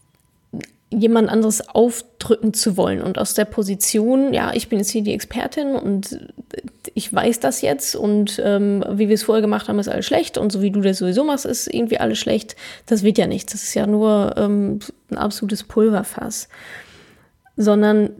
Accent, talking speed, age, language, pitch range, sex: German, 185 wpm, 10-29, German, 205-240 Hz, female